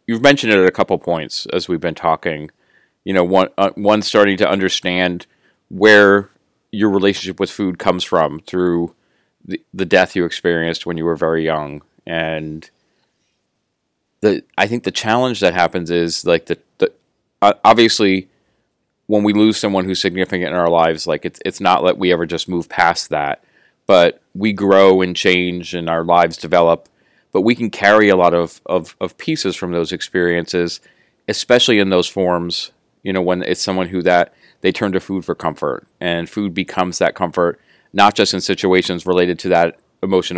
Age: 30-49